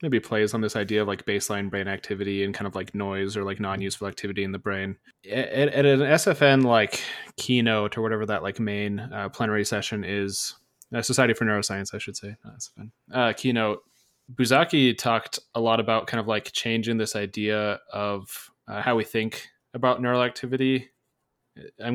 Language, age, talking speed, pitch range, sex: English, 20-39, 185 wpm, 100-125 Hz, male